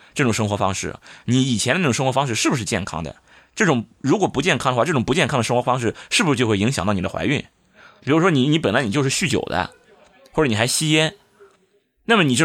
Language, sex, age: Chinese, male, 20-39